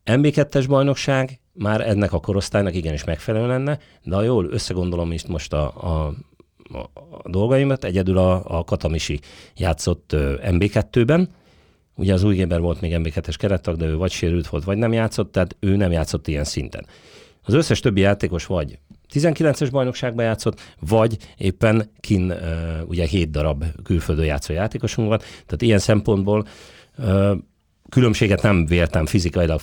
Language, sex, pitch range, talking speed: Hungarian, male, 80-110 Hz, 140 wpm